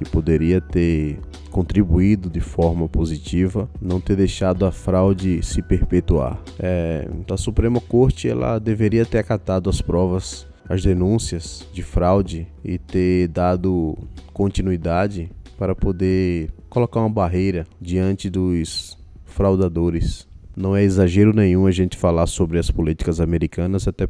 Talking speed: 130 wpm